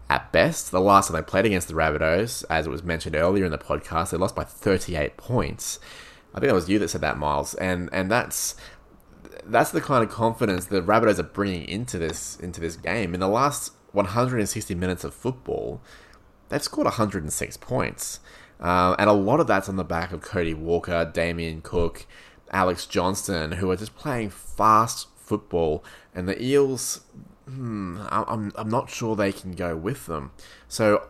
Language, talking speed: English, 195 wpm